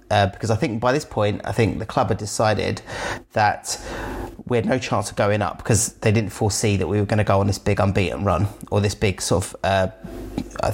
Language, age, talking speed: English, 30-49, 240 wpm